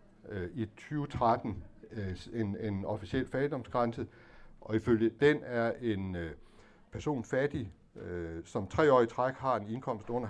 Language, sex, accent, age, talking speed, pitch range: Danish, male, native, 60-79, 120 wpm, 90-120 Hz